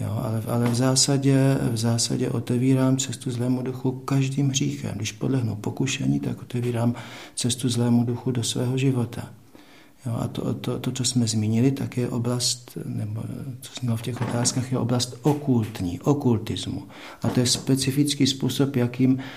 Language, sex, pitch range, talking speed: Czech, male, 110-130 Hz, 160 wpm